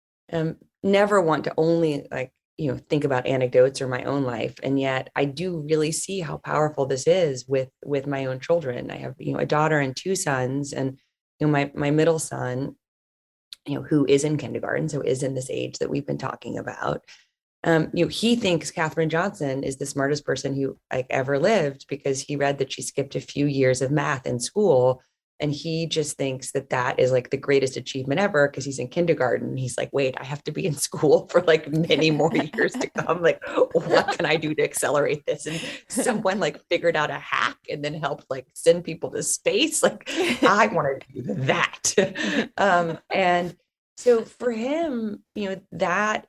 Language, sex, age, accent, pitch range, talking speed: English, female, 20-39, American, 135-175 Hz, 205 wpm